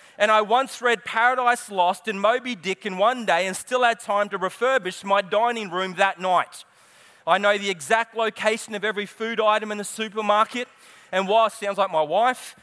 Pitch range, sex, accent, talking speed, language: 210-245 Hz, male, Australian, 200 wpm, English